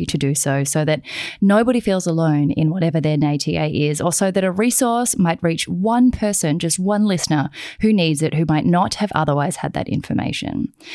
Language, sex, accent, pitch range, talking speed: English, female, Australian, 155-220 Hz, 195 wpm